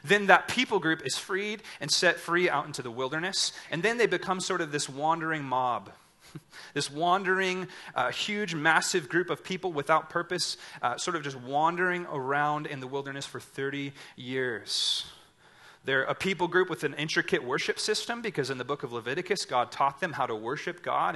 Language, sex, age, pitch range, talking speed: English, male, 30-49, 140-180 Hz, 185 wpm